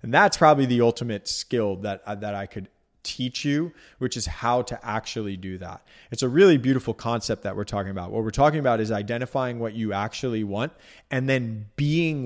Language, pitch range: English, 105-125 Hz